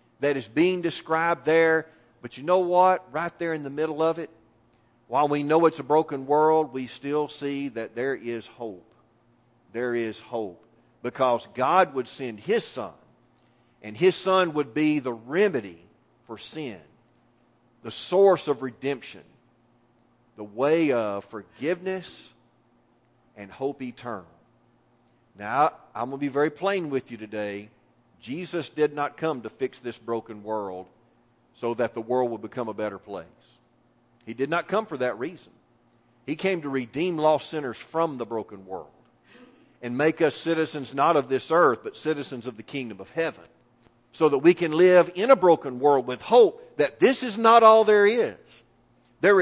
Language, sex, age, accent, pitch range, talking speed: English, male, 40-59, American, 120-165 Hz, 170 wpm